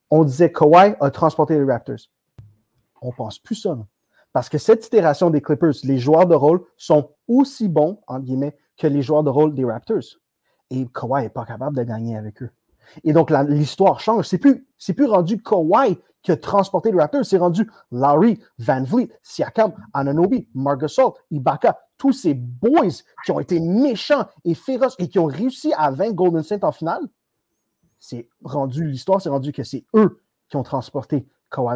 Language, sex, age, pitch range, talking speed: French, male, 30-49, 140-220 Hz, 190 wpm